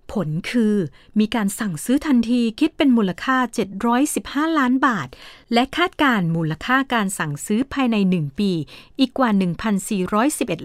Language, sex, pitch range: Thai, female, 195-265 Hz